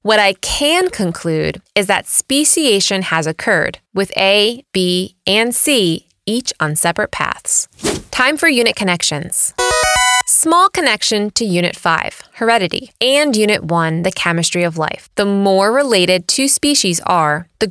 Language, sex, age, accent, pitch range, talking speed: English, female, 20-39, American, 170-235 Hz, 140 wpm